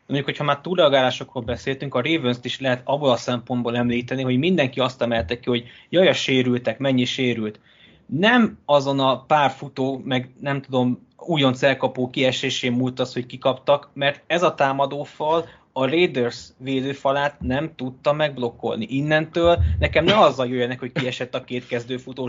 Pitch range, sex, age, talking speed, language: 125-150 Hz, male, 20-39, 160 wpm, Hungarian